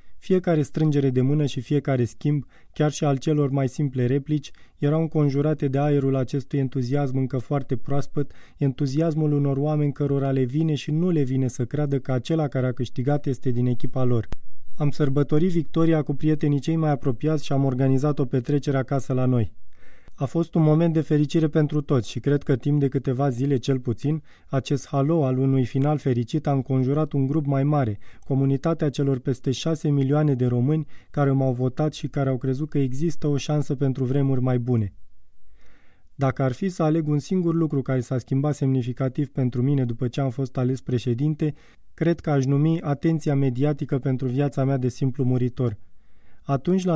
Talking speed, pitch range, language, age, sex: 185 wpm, 130-150 Hz, Romanian, 20-39, male